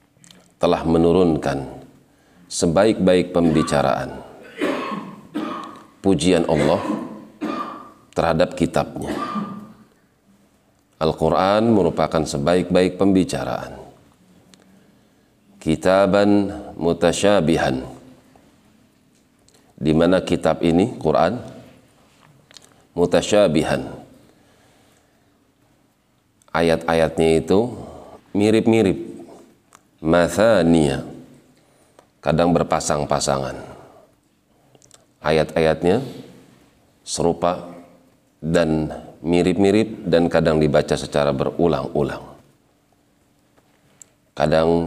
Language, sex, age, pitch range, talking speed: Indonesian, male, 40-59, 75-85 Hz, 50 wpm